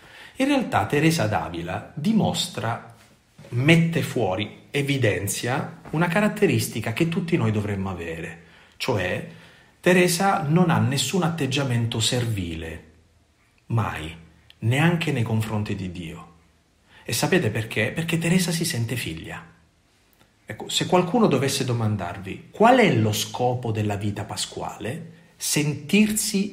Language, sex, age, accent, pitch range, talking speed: Italian, male, 40-59, native, 100-165 Hz, 110 wpm